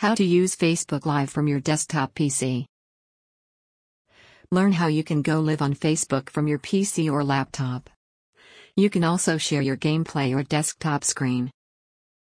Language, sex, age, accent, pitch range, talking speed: English, female, 50-69, American, 140-165 Hz, 150 wpm